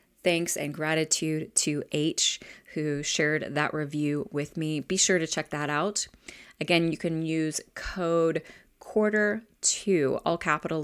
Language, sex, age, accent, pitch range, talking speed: English, female, 30-49, American, 155-185 Hz, 140 wpm